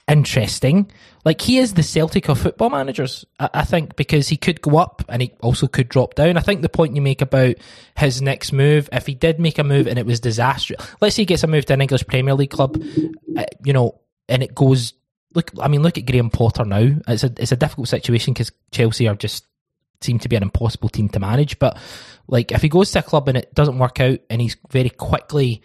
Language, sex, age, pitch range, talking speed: English, male, 20-39, 120-155 Hz, 245 wpm